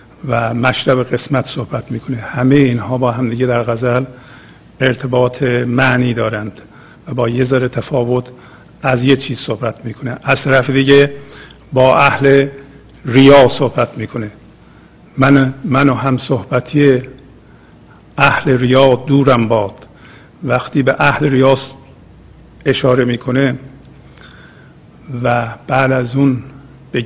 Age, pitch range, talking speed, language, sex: 50-69, 115-130 Hz, 110 wpm, Persian, male